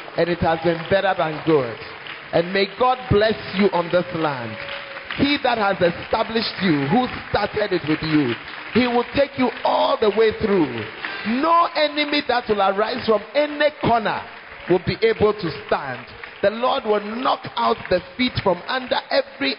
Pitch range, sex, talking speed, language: 165-235 Hz, male, 170 wpm, English